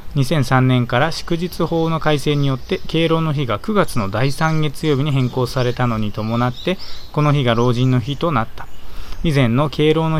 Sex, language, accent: male, Japanese, native